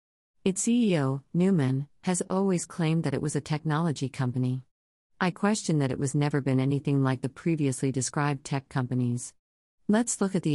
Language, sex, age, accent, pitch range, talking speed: English, female, 50-69, American, 130-155 Hz, 170 wpm